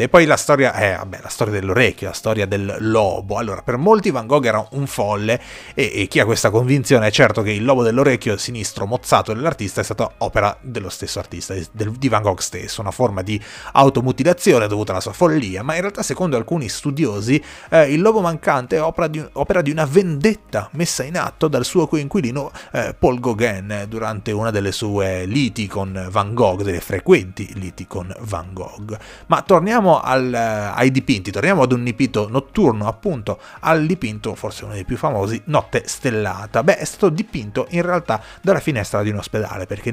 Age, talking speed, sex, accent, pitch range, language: 30-49, 190 wpm, male, native, 105-140 Hz, Italian